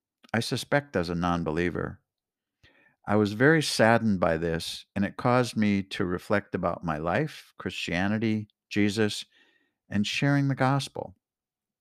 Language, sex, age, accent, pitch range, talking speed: English, male, 60-79, American, 105-135 Hz, 130 wpm